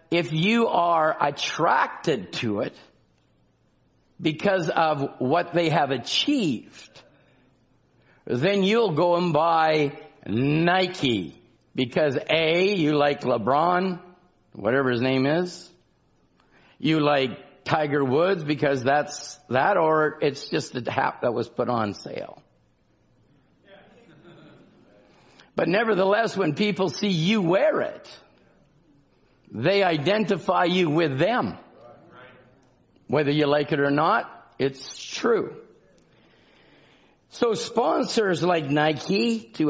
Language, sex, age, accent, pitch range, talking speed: English, male, 50-69, American, 135-185 Hz, 105 wpm